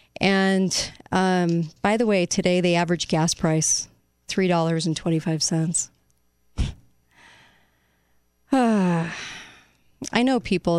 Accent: American